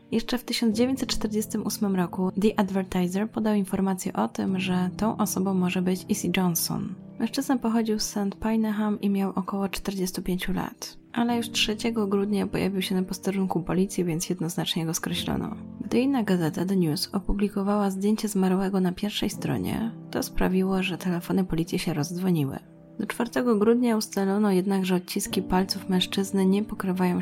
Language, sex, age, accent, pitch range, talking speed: Polish, female, 20-39, native, 180-215 Hz, 155 wpm